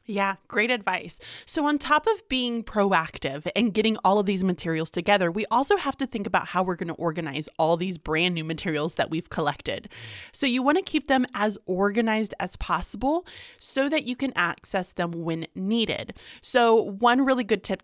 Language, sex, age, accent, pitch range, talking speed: English, female, 20-39, American, 180-230 Hz, 195 wpm